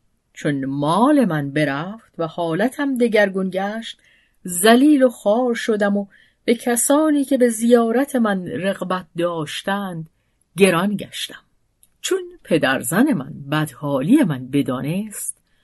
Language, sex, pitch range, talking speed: Persian, female, 155-240 Hz, 110 wpm